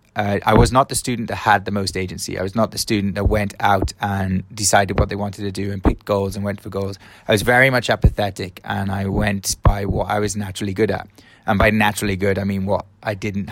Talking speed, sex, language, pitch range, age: 255 wpm, male, English, 95-110 Hz, 20-39